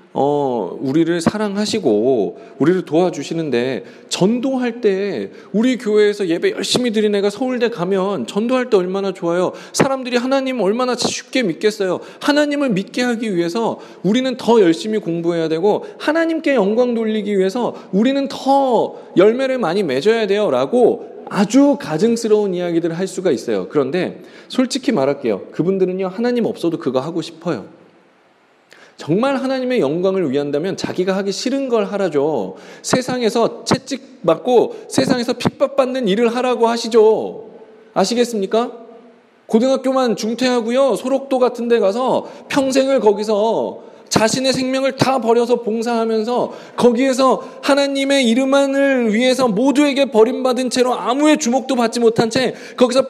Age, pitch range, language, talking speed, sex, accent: 40-59, 200-260 Hz, English, 115 wpm, male, Korean